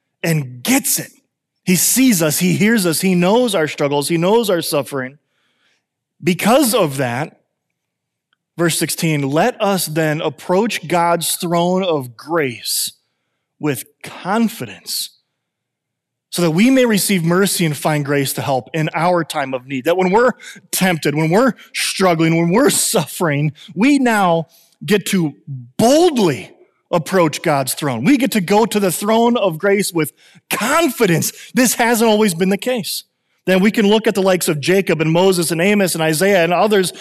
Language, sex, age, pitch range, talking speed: English, male, 30-49, 165-225 Hz, 160 wpm